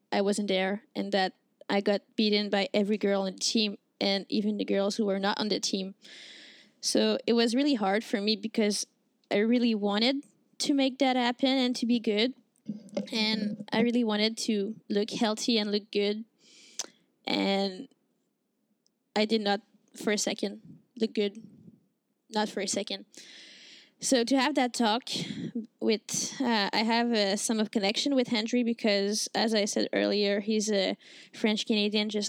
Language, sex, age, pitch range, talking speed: English, female, 10-29, 205-240 Hz, 170 wpm